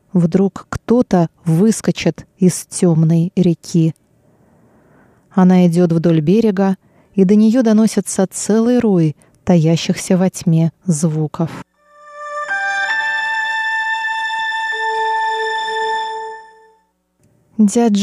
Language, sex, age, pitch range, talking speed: Russian, female, 30-49, 175-220 Hz, 70 wpm